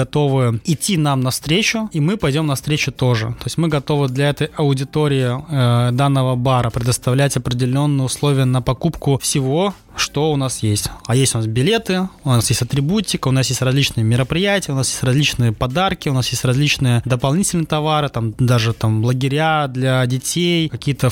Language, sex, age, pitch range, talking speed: Russian, male, 20-39, 125-150 Hz, 175 wpm